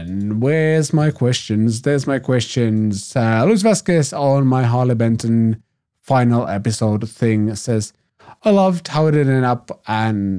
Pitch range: 110-140 Hz